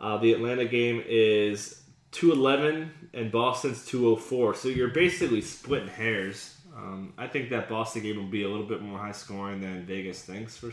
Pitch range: 110-145 Hz